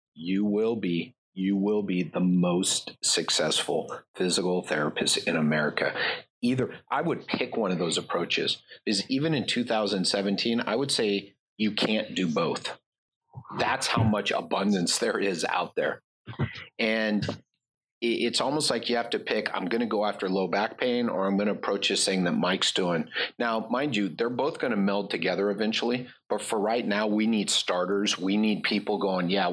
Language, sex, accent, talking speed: English, male, American, 180 wpm